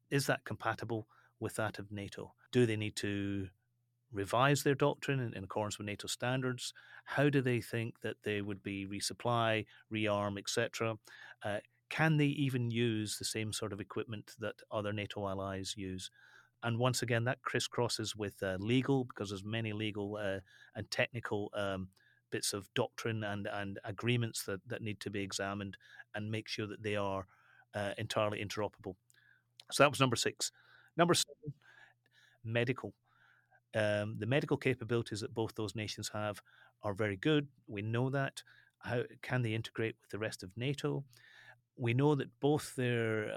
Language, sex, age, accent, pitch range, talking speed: English, male, 30-49, British, 105-125 Hz, 165 wpm